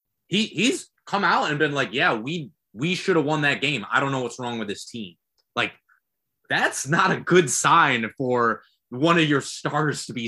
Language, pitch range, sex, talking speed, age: English, 115-165 Hz, male, 210 wpm, 20-39